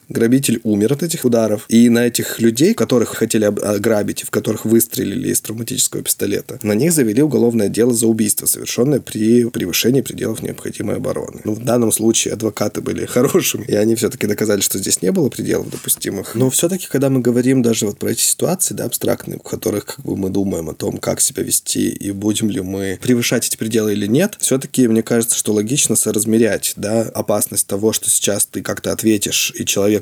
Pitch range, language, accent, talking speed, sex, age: 100-115 Hz, Russian, native, 190 wpm, male, 20-39